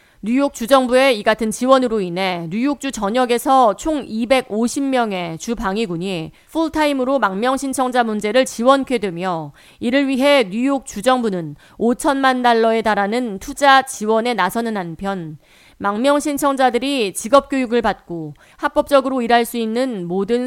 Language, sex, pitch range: Korean, female, 195-265 Hz